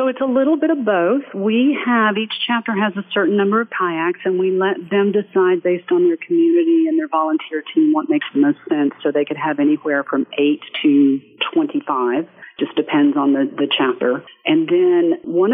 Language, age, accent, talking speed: English, 50-69, American, 205 wpm